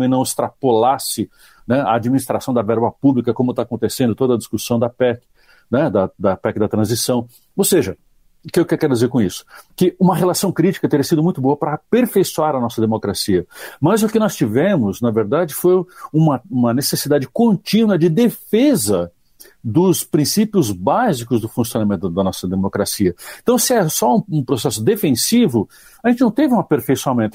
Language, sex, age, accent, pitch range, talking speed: Portuguese, male, 60-79, Brazilian, 110-175 Hz, 175 wpm